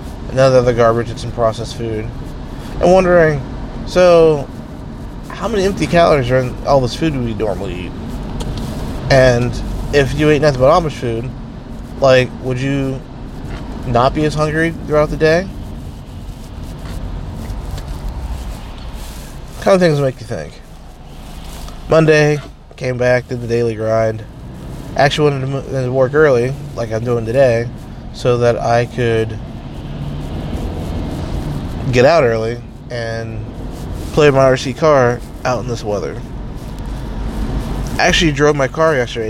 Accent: American